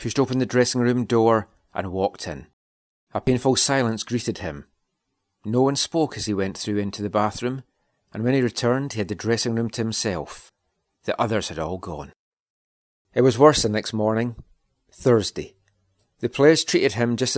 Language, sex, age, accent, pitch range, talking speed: English, male, 40-59, British, 105-130 Hz, 180 wpm